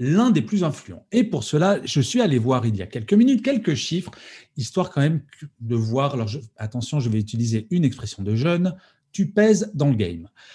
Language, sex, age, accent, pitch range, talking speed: French, male, 40-59, French, 125-195 Hz, 215 wpm